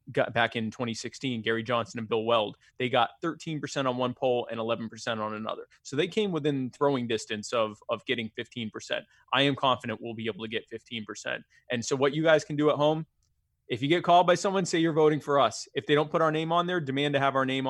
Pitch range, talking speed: 120-140 Hz, 240 wpm